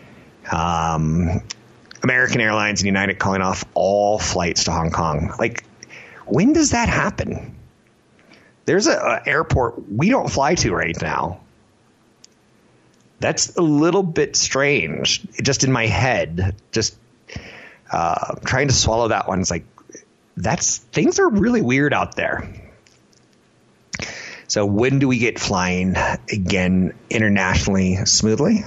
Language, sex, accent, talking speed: English, male, American, 130 wpm